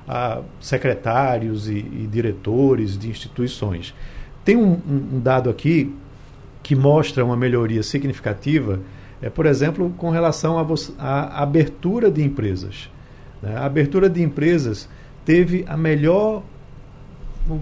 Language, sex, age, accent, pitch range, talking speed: Portuguese, male, 50-69, Brazilian, 130-170 Hz, 125 wpm